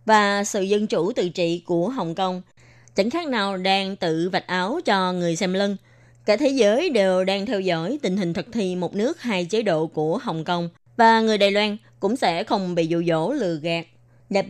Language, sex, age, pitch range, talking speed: Vietnamese, female, 20-39, 175-220 Hz, 215 wpm